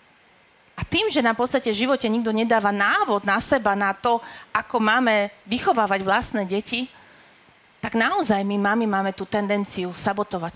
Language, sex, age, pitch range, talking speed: Slovak, female, 40-59, 200-250 Hz, 155 wpm